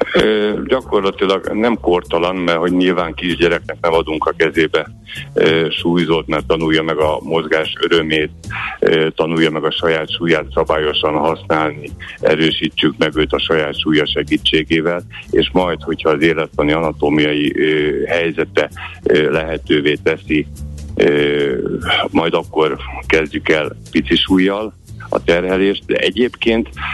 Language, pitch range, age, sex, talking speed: Hungarian, 75-90 Hz, 60-79, male, 125 wpm